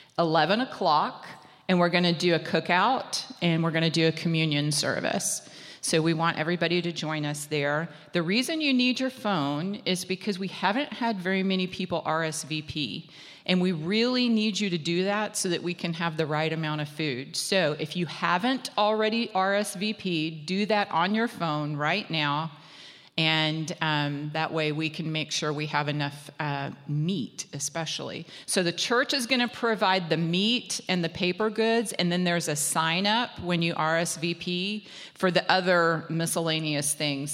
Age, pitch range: 40-59, 160-205 Hz